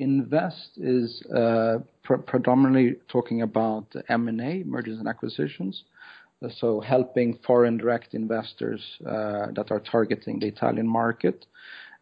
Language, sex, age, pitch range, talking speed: English, male, 40-59, 105-120 Hz, 115 wpm